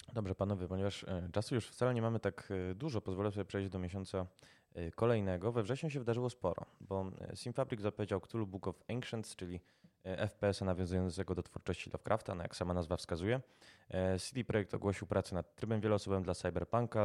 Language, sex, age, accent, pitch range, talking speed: Polish, male, 20-39, native, 90-105 Hz, 165 wpm